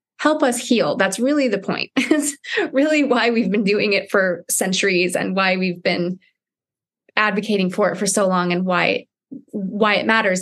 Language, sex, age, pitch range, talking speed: English, female, 20-39, 190-235 Hz, 180 wpm